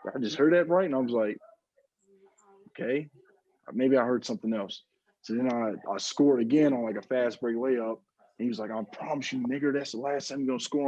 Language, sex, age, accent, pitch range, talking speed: English, male, 20-39, American, 110-140 Hz, 230 wpm